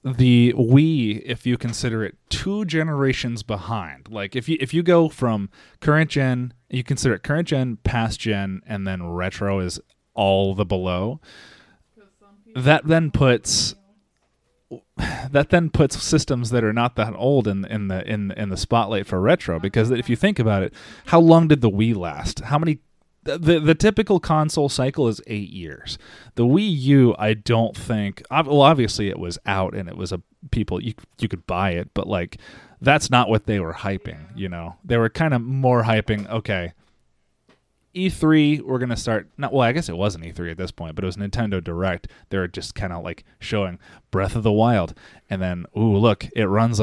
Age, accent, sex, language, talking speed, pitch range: 30-49, American, male, English, 195 wpm, 100-140 Hz